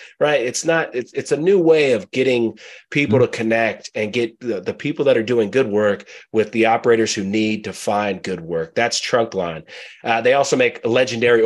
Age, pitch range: 30-49, 105-130 Hz